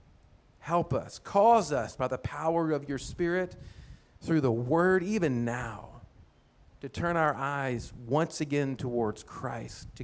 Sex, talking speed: male, 145 wpm